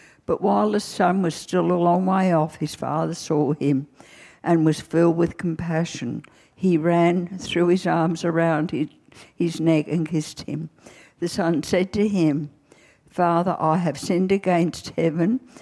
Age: 60-79